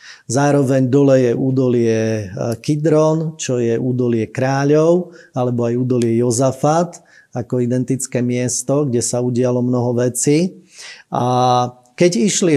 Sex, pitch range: male, 125-155 Hz